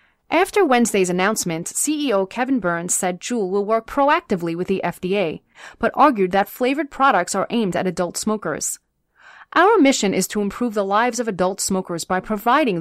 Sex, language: female, English